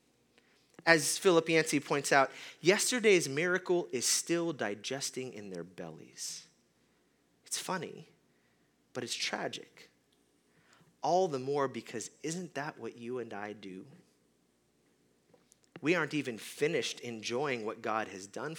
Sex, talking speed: male, 125 wpm